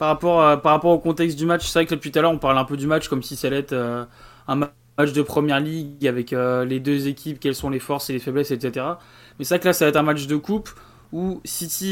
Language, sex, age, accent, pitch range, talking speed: French, male, 20-39, French, 145-175 Hz, 300 wpm